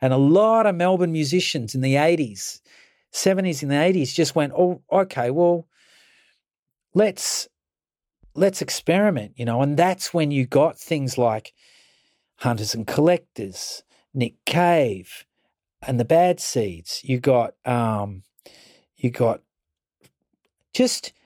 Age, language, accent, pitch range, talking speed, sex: 40-59, English, Australian, 125-170 Hz, 125 wpm, male